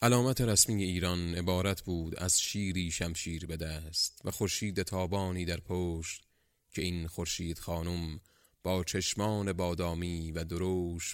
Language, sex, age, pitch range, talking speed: Persian, male, 30-49, 85-105 Hz, 130 wpm